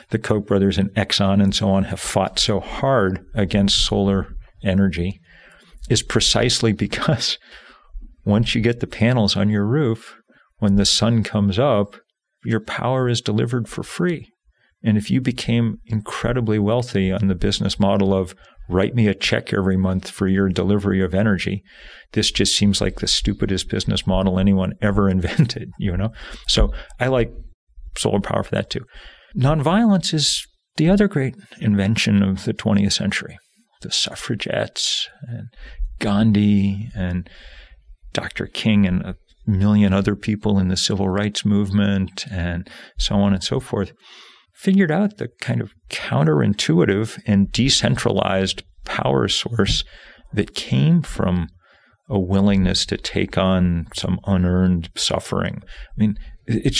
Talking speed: 145 wpm